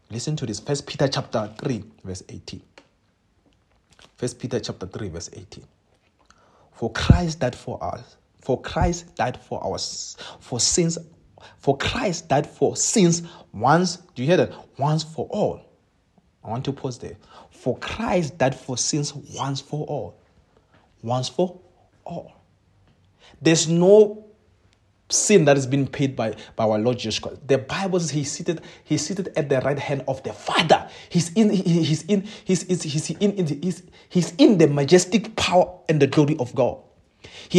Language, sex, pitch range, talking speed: English, male, 120-170 Hz, 150 wpm